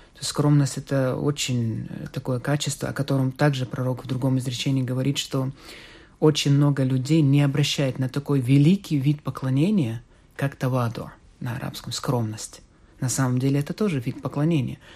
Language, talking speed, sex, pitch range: Russian, 145 wpm, male, 130-150 Hz